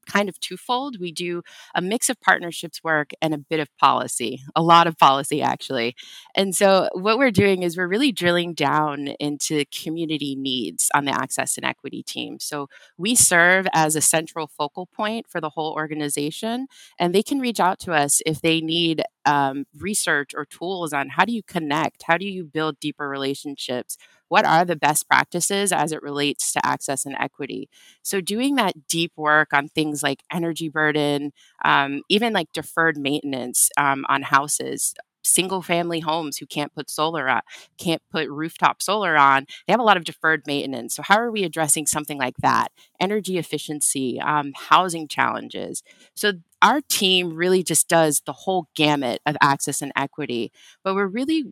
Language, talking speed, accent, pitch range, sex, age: English, 180 wpm, American, 145-185 Hz, female, 20-39